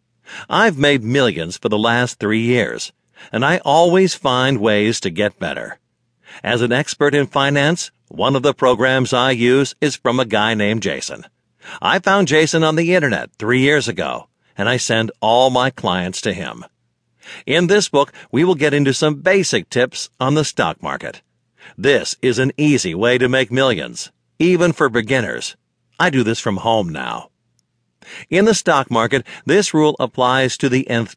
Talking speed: 175 wpm